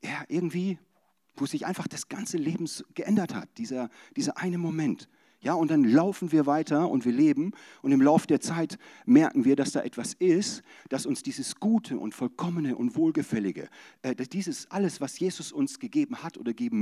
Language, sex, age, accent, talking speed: German, male, 40-59, German, 190 wpm